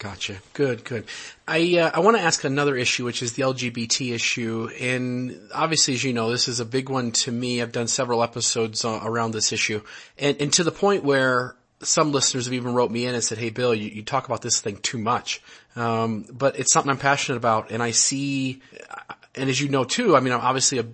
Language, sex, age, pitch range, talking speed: English, male, 30-49, 115-135 Hz, 230 wpm